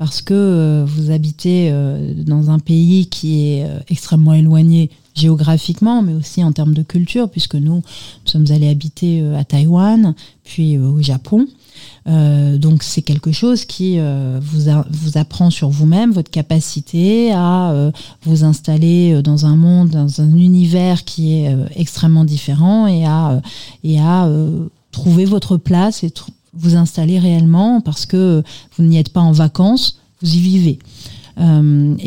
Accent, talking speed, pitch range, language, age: French, 160 wpm, 155-180 Hz, French, 30-49